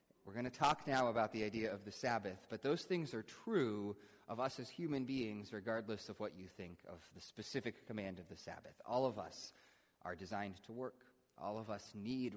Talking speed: 215 wpm